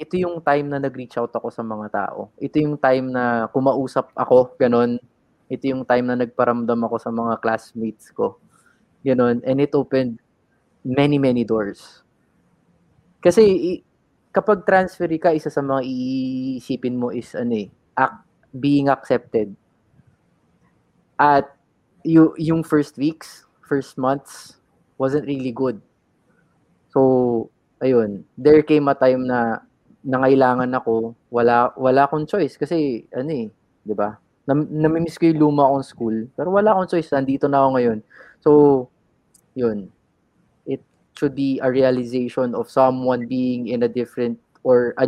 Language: Filipino